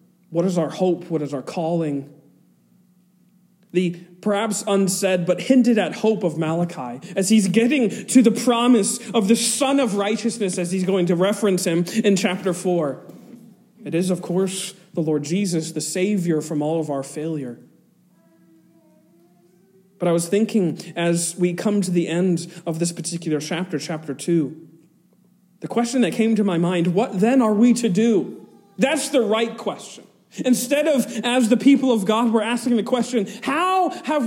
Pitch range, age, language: 170-220 Hz, 40-59, English